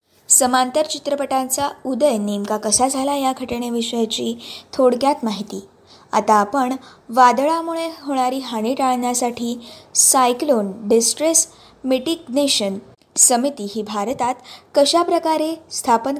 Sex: female